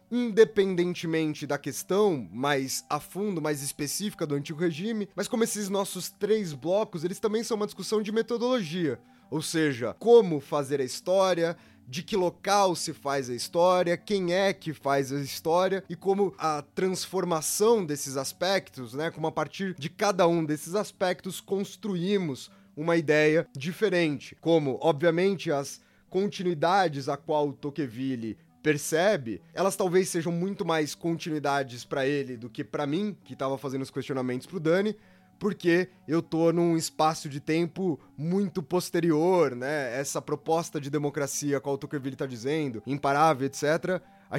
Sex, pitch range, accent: male, 140-185 Hz, Brazilian